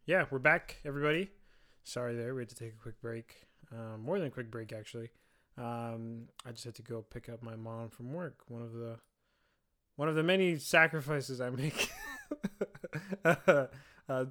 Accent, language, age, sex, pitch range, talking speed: American, English, 20-39, male, 120-155 Hz, 180 wpm